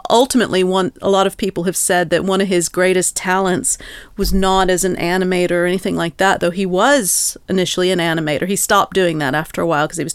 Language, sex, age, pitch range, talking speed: English, female, 40-59, 170-195 Hz, 230 wpm